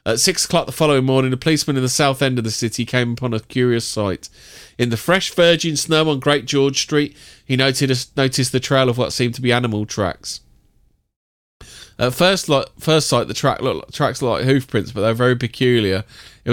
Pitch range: 110-135 Hz